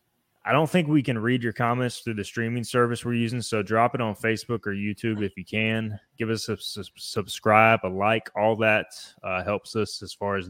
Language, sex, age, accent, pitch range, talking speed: English, male, 20-39, American, 100-115 Hz, 225 wpm